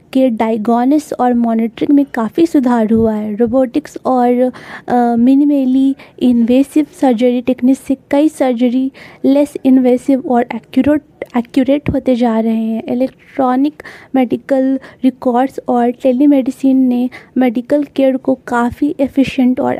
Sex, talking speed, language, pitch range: female, 120 wpm, Hindi, 245-275 Hz